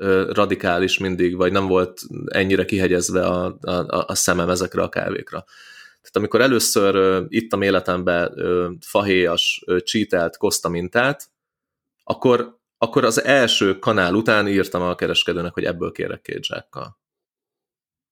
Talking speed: 125 wpm